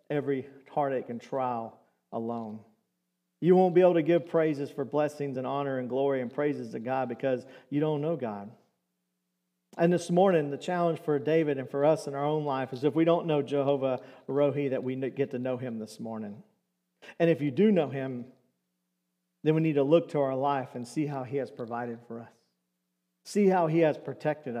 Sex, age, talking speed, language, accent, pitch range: male, 50-69, 205 wpm, English, American, 130-160 Hz